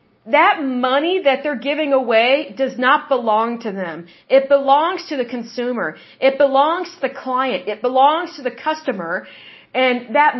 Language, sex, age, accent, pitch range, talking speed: English, female, 40-59, American, 245-320 Hz, 160 wpm